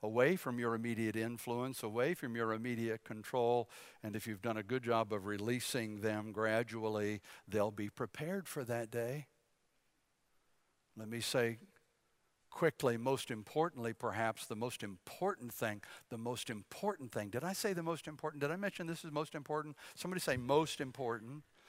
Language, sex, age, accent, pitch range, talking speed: English, male, 60-79, American, 110-140 Hz, 165 wpm